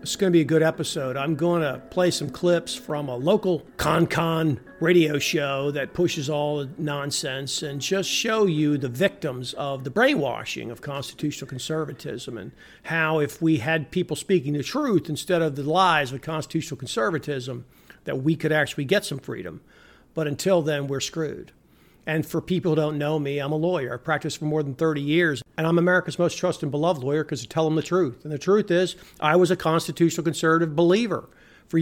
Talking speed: 200 wpm